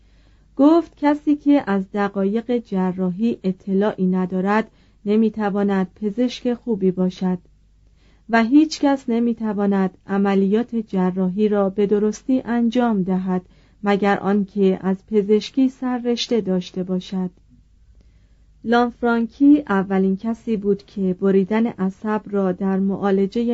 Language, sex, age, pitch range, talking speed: Persian, female, 40-59, 185-235 Hz, 100 wpm